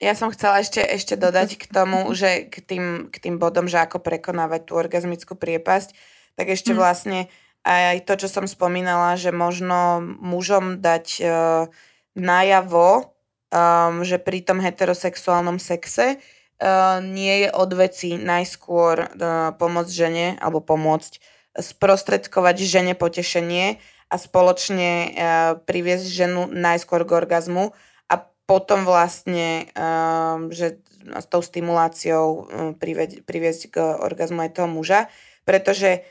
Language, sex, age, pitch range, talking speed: Slovak, female, 20-39, 170-190 Hz, 125 wpm